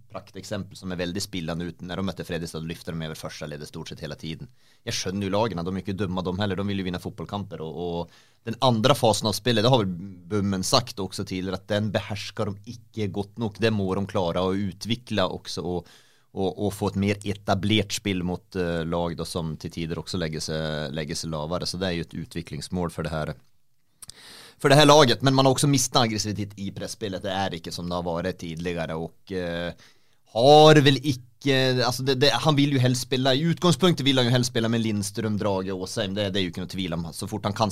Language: English